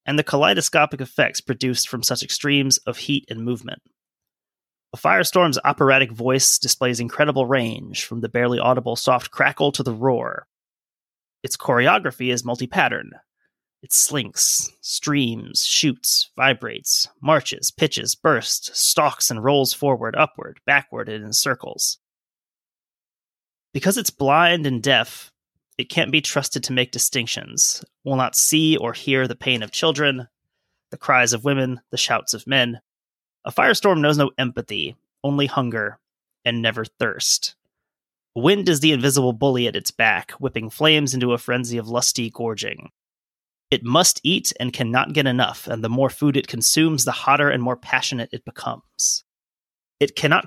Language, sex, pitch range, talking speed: English, male, 125-145 Hz, 150 wpm